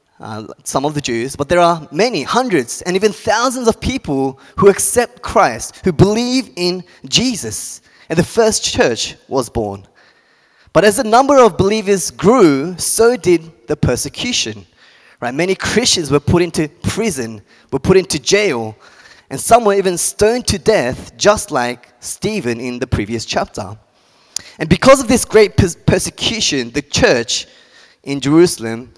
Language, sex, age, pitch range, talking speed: English, male, 20-39, 130-190 Hz, 150 wpm